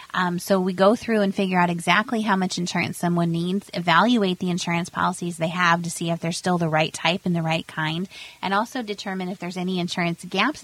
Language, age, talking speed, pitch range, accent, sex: English, 30-49, 225 wpm, 165-195 Hz, American, female